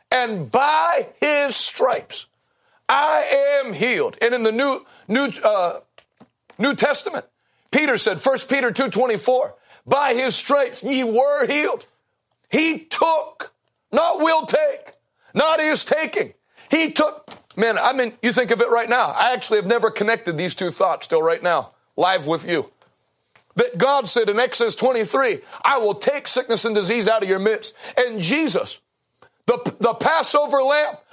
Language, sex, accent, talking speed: English, male, American, 155 wpm